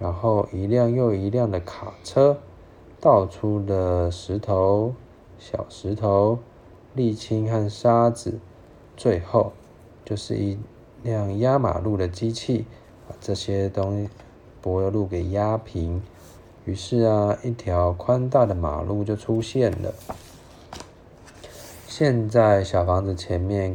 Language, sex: Chinese, male